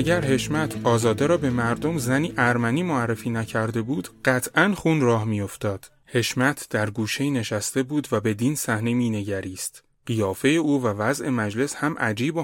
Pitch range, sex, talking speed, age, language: 110-135 Hz, male, 155 wpm, 30-49, Persian